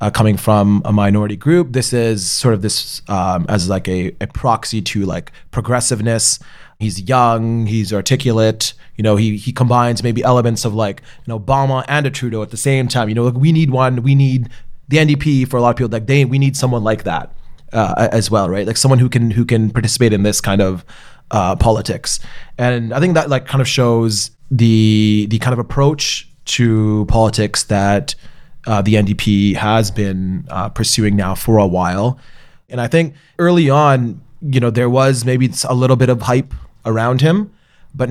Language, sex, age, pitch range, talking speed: English, male, 30-49, 110-130 Hz, 195 wpm